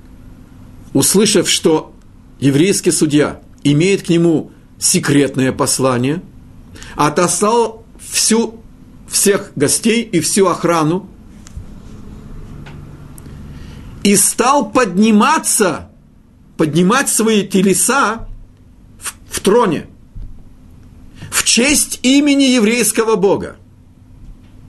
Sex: male